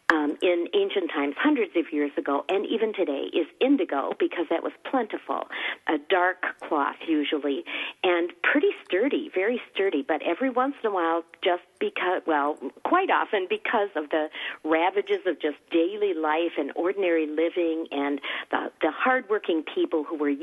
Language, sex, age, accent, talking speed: English, female, 50-69, American, 160 wpm